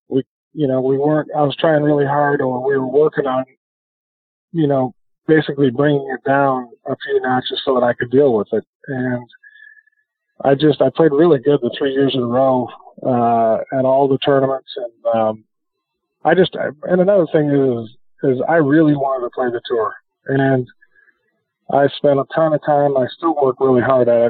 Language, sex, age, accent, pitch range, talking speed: English, male, 40-59, American, 130-160 Hz, 190 wpm